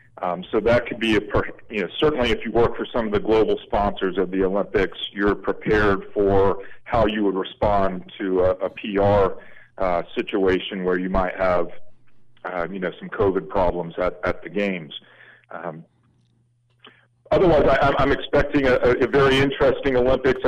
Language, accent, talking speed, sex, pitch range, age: English, American, 170 wpm, male, 100-120 Hz, 40-59